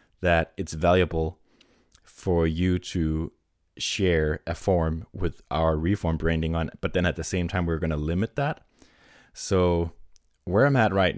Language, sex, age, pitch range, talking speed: English, male, 20-39, 80-95 Hz, 160 wpm